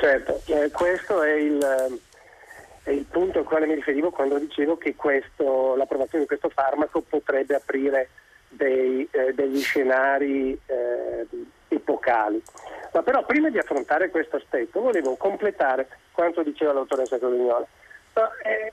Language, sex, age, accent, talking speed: Italian, male, 50-69, native, 135 wpm